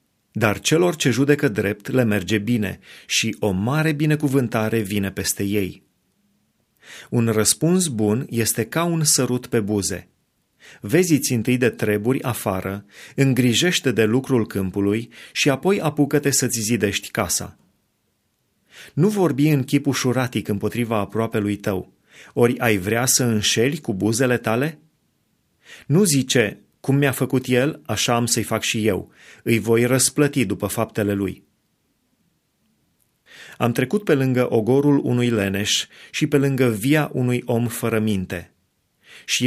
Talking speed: 135 wpm